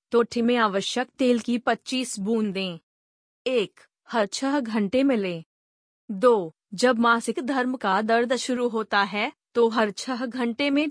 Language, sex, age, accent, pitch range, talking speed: Hindi, female, 30-49, native, 210-250 Hz, 150 wpm